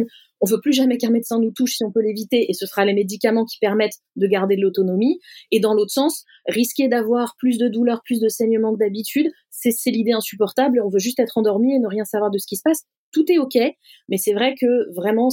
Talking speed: 245 wpm